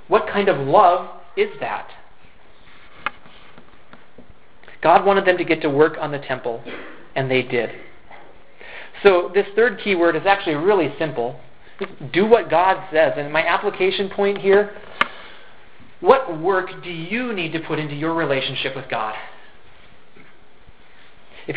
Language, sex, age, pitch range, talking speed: English, male, 40-59, 160-210 Hz, 135 wpm